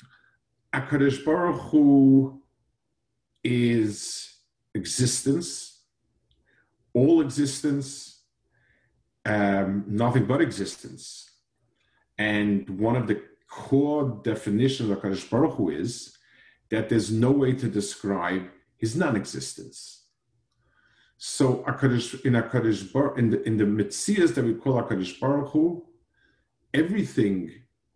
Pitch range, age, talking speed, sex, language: 105-135 Hz, 50-69, 100 wpm, male, English